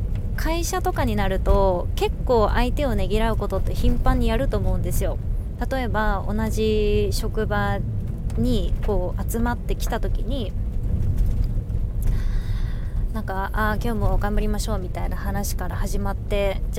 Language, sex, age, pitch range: Japanese, female, 20-39, 95-110 Hz